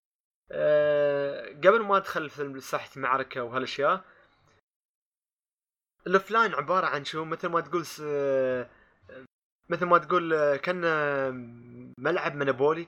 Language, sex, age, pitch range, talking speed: Arabic, male, 20-39, 130-180 Hz, 105 wpm